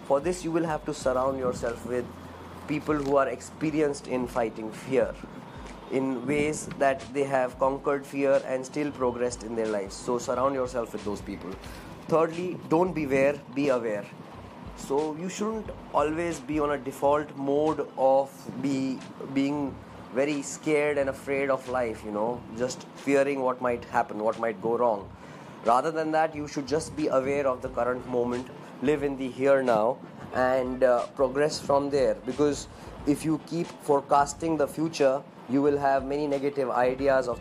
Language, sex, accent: English, male, Indian